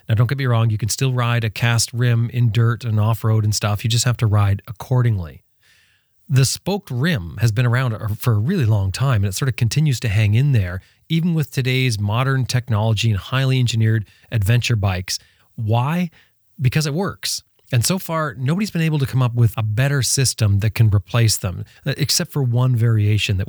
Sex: male